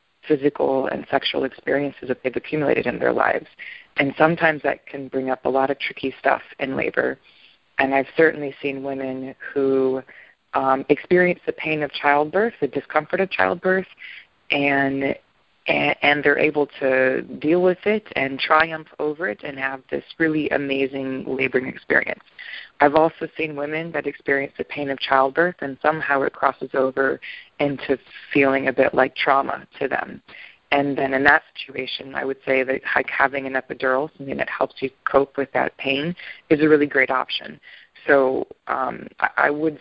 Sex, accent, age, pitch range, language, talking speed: female, American, 20-39, 135-155 Hz, English, 165 wpm